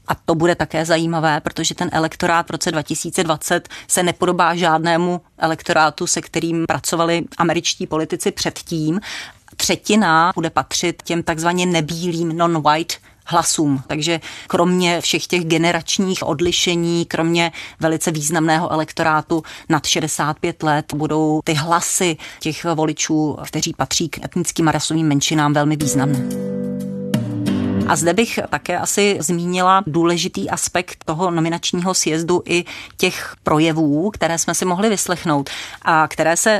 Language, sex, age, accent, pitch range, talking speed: Czech, female, 30-49, native, 160-180 Hz, 130 wpm